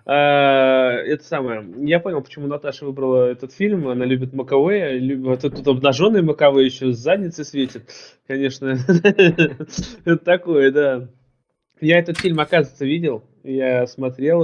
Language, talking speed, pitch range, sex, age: Russian, 140 wpm, 135-170 Hz, male, 20-39